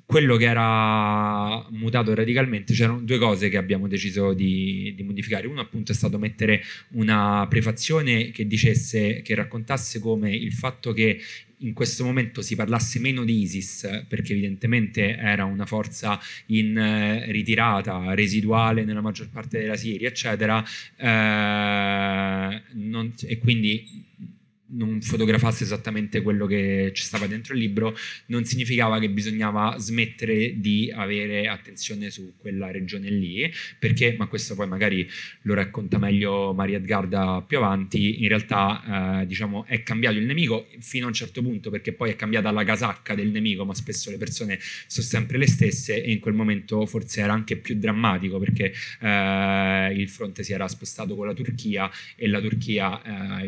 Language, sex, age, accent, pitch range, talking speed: Italian, male, 20-39, native, 100-115 Hz, 160 wpm